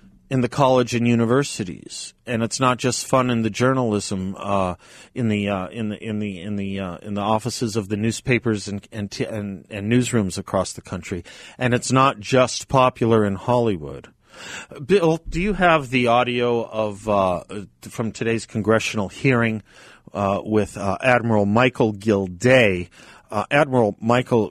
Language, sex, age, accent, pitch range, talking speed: English, male, 40-59, American, 95-120 Hz, 170 wpm